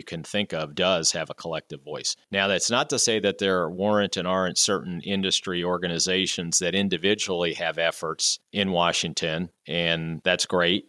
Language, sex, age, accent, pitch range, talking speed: English, male, 50-69, American, 85-100 Hz, 170 wpm